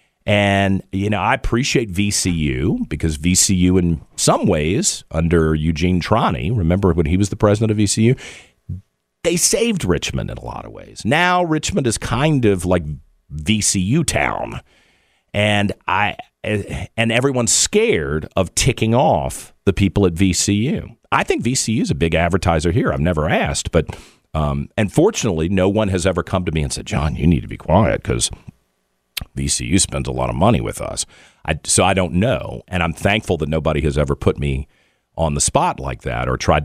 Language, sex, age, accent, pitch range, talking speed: English, male, 50-69, American, 80-115 Hz, 180 wpm